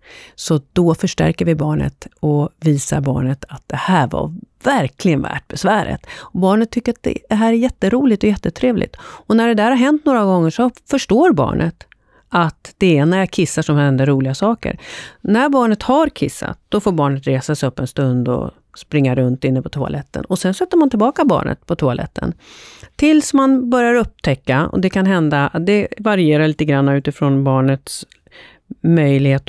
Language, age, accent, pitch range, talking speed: Swedish, 40-59, native, 140-225 Hz, 175 wpm